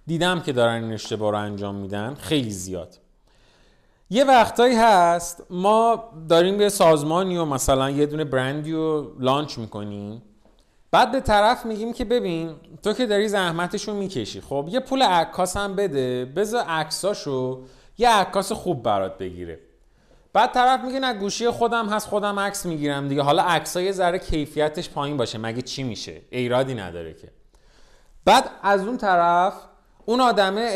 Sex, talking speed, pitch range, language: male, 160 wpm, 125-195 Hz, Persian